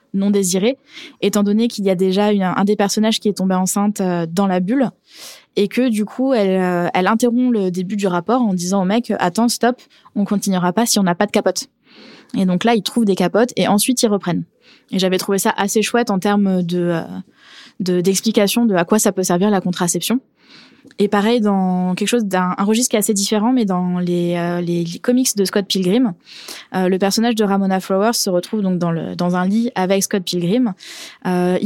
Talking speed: 215 wpm